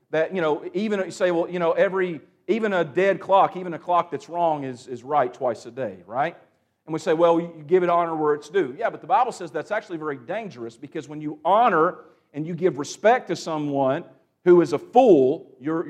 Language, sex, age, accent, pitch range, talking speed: English, male, 50-69, American, 160-205 Hz, 225 wpm